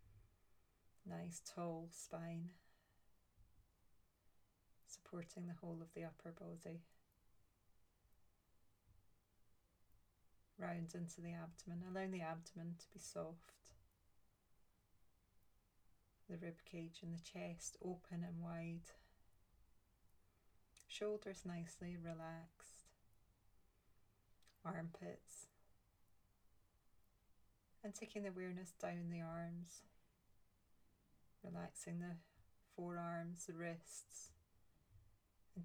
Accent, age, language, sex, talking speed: British, 30-49, English, female, 75 wpm